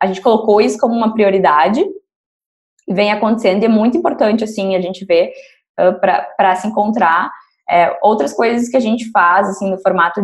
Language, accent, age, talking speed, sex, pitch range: Portuguese, Brazilian, 10-29, 190 wpm, female, 195-245 Hz